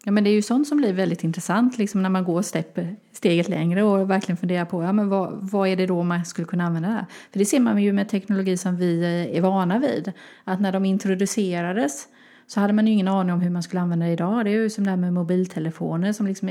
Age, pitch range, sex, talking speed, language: 30-49, 180-210 Hz, female, 260 wpm, Swedish